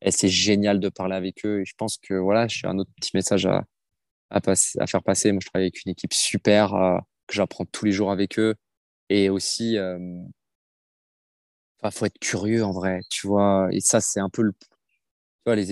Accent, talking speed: French, 225 wpm